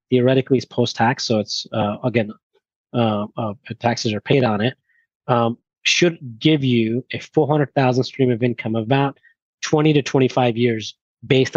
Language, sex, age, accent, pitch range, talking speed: English, male, 30-49, American, 115-140 Hz, 165 wpm